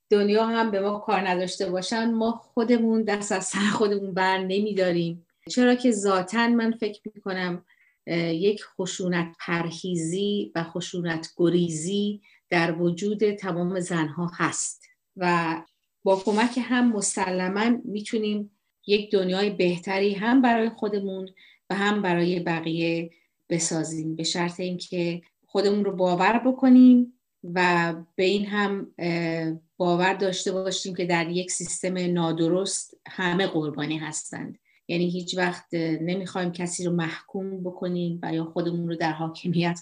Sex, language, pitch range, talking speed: female, Persian, 170-205 Hz, 125 wpm